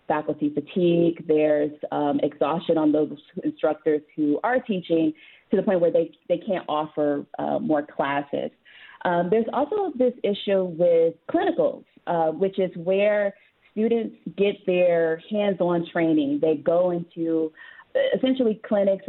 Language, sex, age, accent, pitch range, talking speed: English, female, 30-49, American, 155-200 Hz, 135 wpm